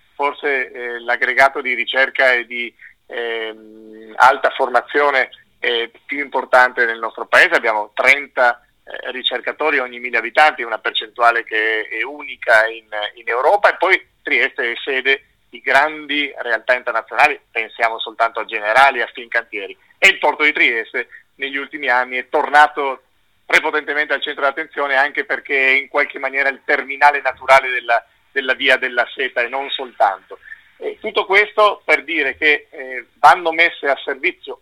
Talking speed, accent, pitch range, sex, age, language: 155 wpm, native, 130-195 Hz, male, 40-59, Italian